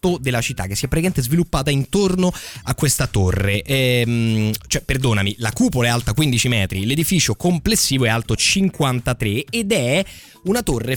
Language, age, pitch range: Italian, 20-39, 100-140 Hz